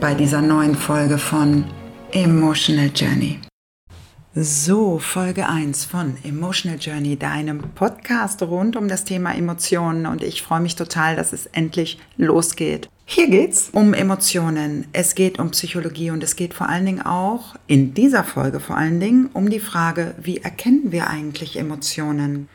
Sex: female